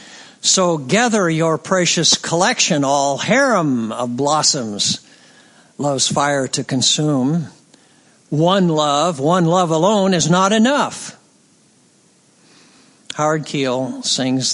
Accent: American